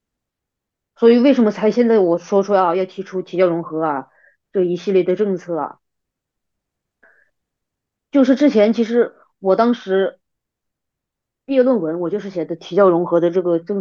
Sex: female